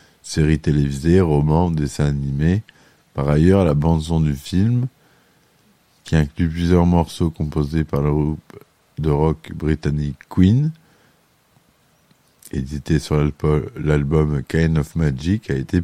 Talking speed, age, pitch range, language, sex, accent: 115 wpm, 50-69, 75-90 Hz, French, male, French